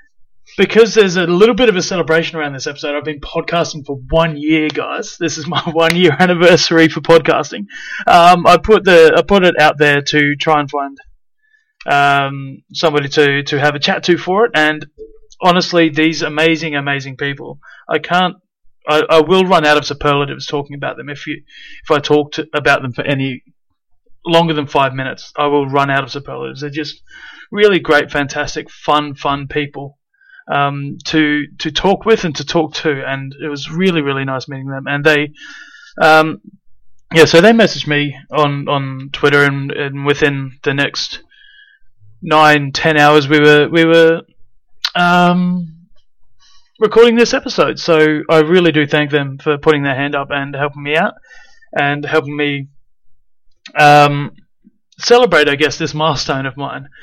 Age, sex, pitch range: 30-49, male, 145-175 Hz